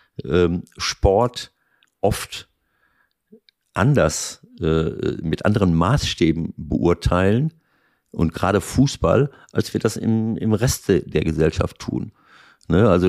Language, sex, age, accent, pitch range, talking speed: German, male, 50-69, German, 90-110 Hz, 95 wpm